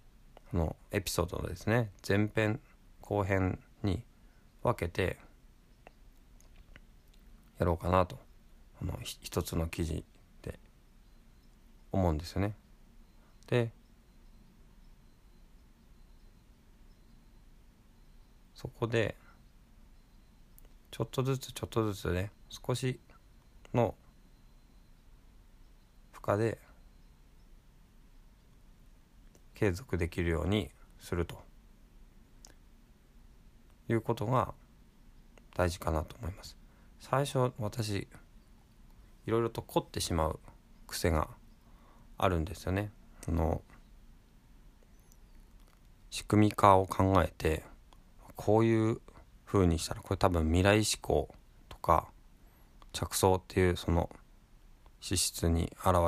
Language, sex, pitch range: Japanese, male, 85-110 Hz